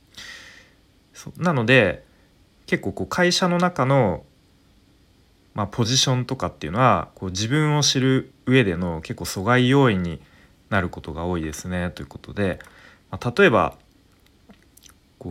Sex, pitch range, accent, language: male, 90-125 Hz, native, Japanese